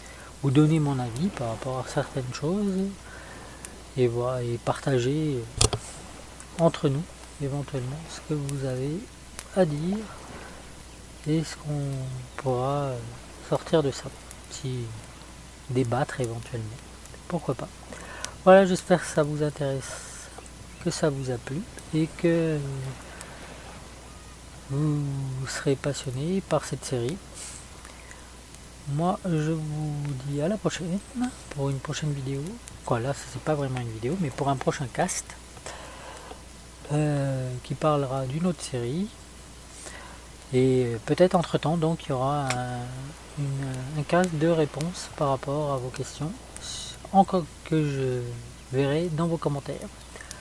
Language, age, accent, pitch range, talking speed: French, 40-59, French, 130-165 Hz, 125 wpm